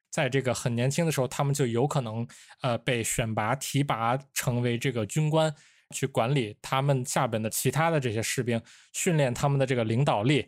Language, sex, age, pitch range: Chinese, male, 20-39, 120-155 Hz